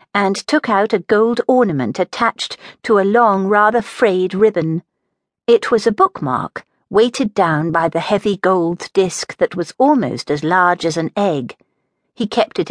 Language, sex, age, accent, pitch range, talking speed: English, female, 50-69, British, 165-235 Hz, 165 wpm